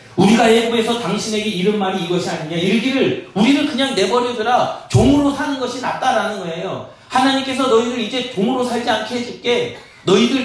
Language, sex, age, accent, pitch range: Korean, male, 40-59, native, 155-240 Hz